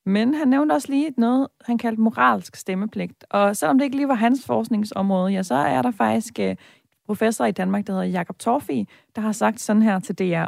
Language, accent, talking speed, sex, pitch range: Danish, native, 210 wpm, female, 195-245 Hz